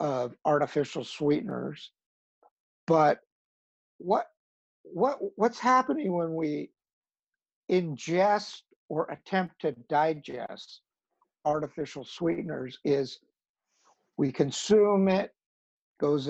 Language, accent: English, American